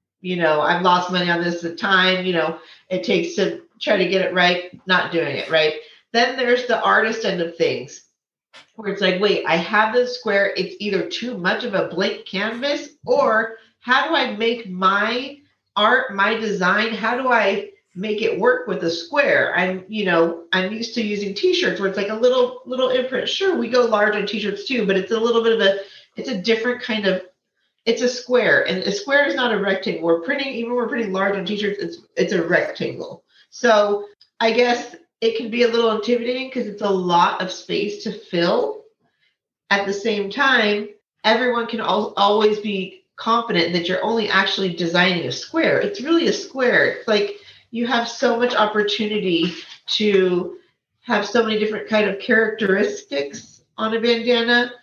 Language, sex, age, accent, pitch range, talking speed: English, female, 40-59, American, 190-240 Hz, 190 wpm